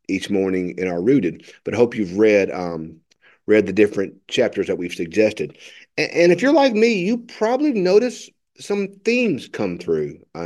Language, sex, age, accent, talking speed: English, male, 50-69, American, 185 wpm